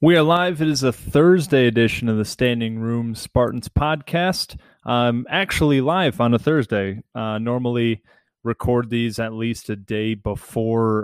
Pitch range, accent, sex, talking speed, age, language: 110-135 Hz, American, male, 160 wpm, 20-39, English